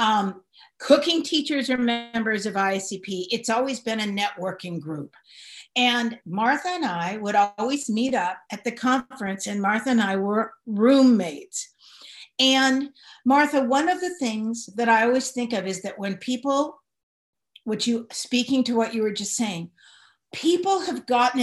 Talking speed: 160 wpm